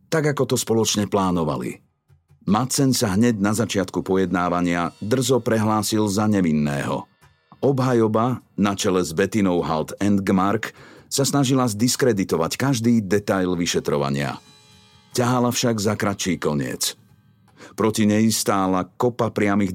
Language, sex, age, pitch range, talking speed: Slovak, male, 40-59, 95-115 Hz, 120 wpm